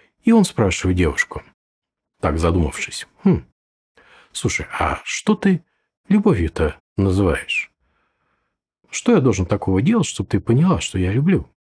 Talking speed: 120 wpm